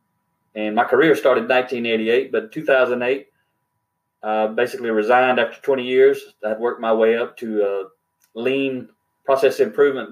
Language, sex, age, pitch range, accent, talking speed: English, male, 30-49, 115-145 Hz, American, 160 wpm